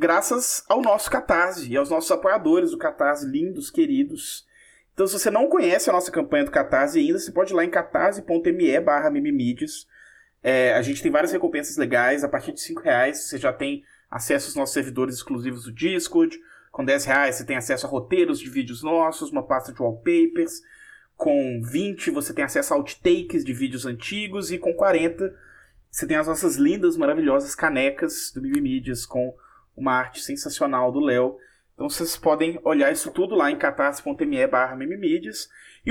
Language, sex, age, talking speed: English, male, 20-39, 175 wpm